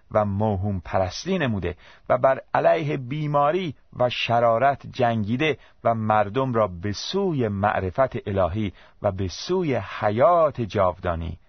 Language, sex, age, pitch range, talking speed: Persian, male, 40-59, 100-135 Hz, 120 wpm